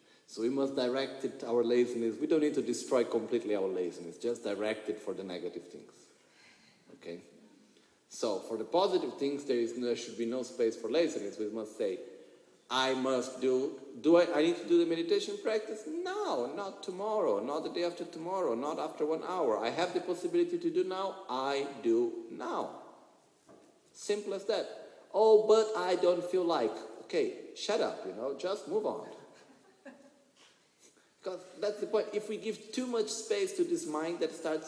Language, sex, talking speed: Italian, male, 180 wpm